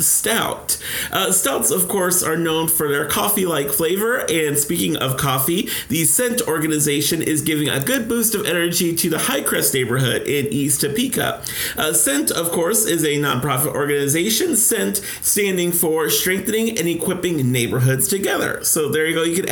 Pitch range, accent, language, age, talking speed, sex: 150-190 Hz, American, English, 40-59, 165 wpm, male